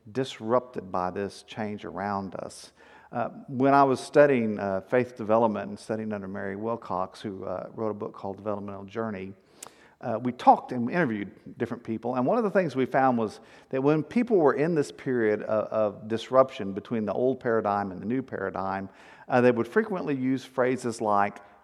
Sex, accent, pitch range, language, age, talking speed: male, American, 110-135 Hz, English, 50-69, 185 wpm